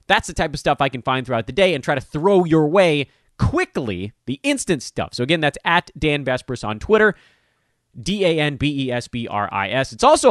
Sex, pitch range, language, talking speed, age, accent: male, 120-170 Hz, English, 185 wpm, 30-49, American